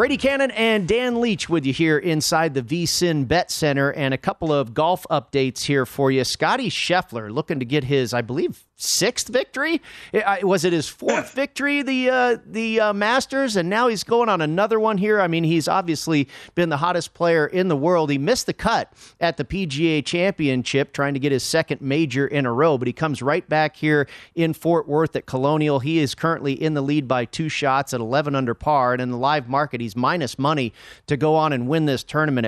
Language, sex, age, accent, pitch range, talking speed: English, male, 40-59, American, 135-170 Hz, 220 wpm